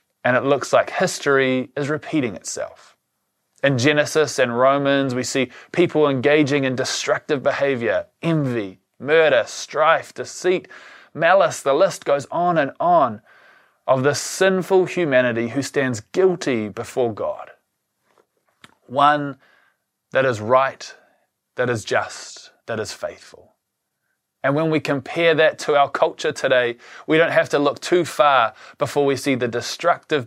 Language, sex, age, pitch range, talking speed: English, male, 20-39, 125-155 Hz, 140 wpm